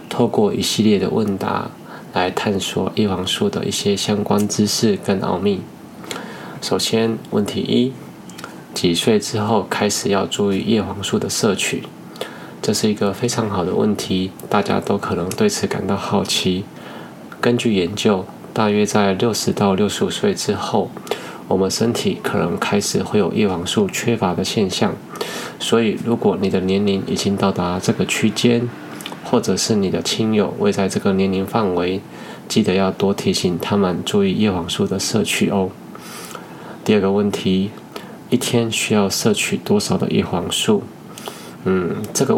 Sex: male